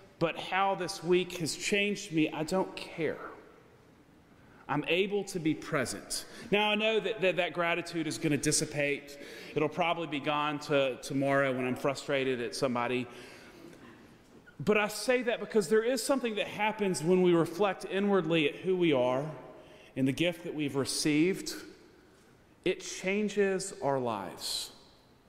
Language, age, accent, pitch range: English, 30-49, American, 120-175 Hz